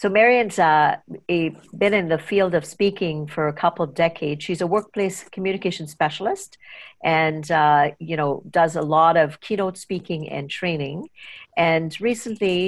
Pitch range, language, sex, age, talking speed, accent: 155-190 Hz, English, female, 50-69, 155 wpm, American